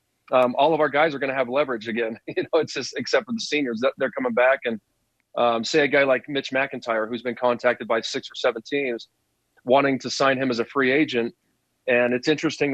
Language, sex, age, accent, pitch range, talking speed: English, male, 30-49, American, 120-150 Hz, 255 wpm